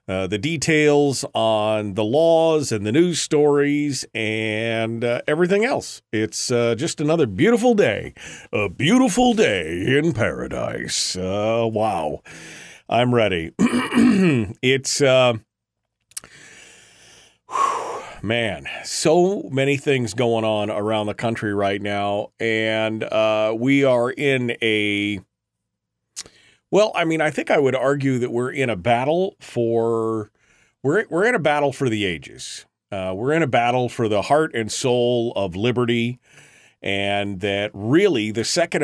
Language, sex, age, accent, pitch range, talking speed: English, male, 40-59, American, 110-145 Hz, 135 wpm